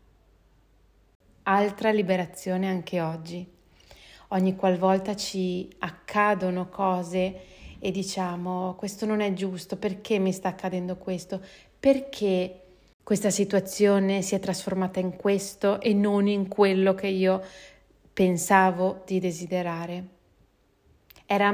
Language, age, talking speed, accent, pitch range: Italian, 30-49, 105 wpm, native, 180-195 Hz